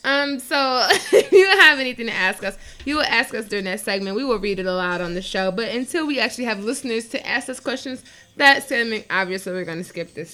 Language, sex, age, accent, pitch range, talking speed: English, female, 20-39, American, 195-275 Hz, 245 wpm